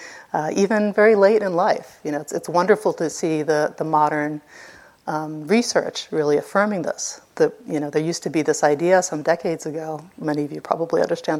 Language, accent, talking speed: English, American, 200 wpm